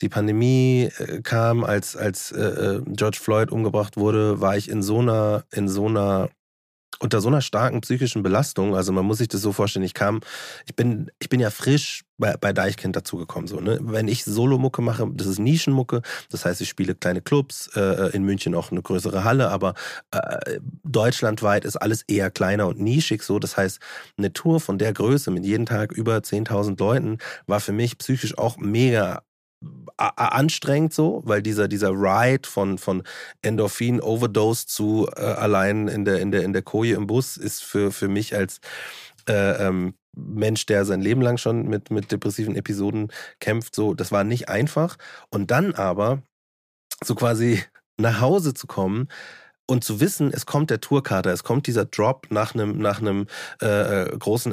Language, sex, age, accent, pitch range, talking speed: German, male, 30-49, German, 100-125 Hz, 165 wpm